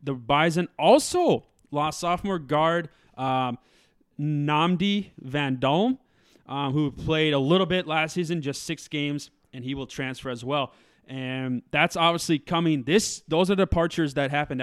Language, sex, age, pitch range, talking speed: English, male, 20-39, 140-180 Hz, 150 wpm